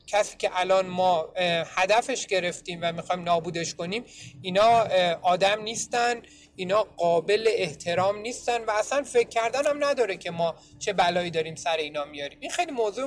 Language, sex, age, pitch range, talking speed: Persian, male, 30-49, 165-210 Hz, 150 wpm